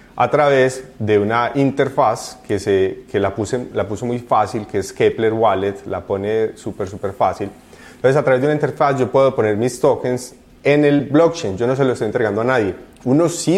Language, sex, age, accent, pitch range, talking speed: Spanish, male, 30-49, Colombian, 110-140 Hz, 210 wpm